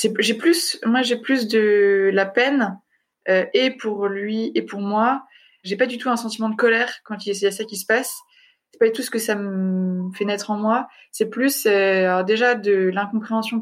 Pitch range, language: 200-245 Hz, French